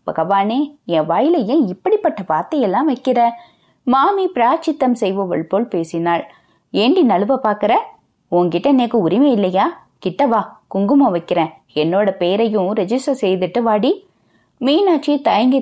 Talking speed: 85 wpm